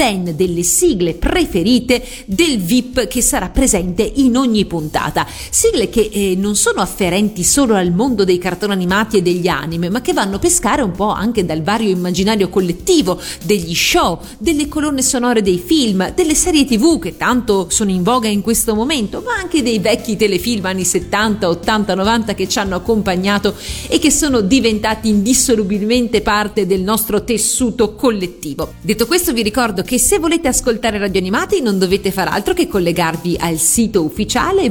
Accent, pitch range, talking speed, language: native, 195-270 Hz, 170 wpm, Italian